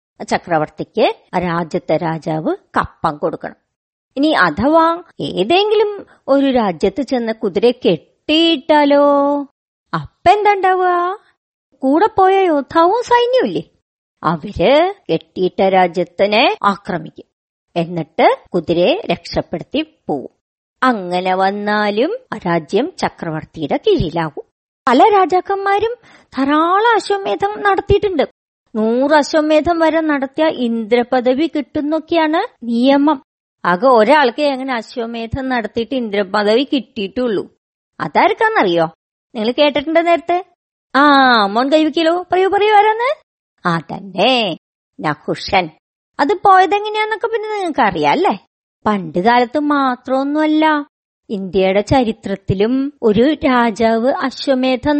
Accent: native